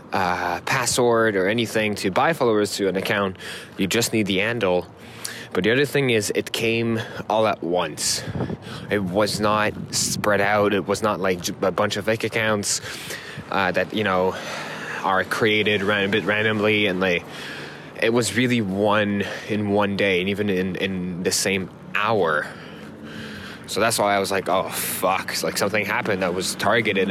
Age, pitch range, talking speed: 20-39, 95-110 Hz, 175 wpm